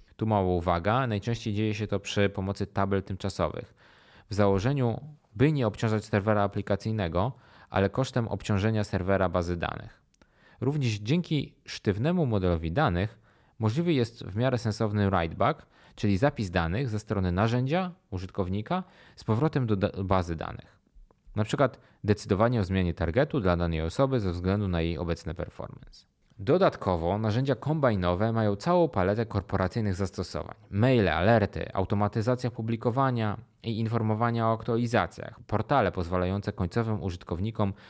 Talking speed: 130 wpm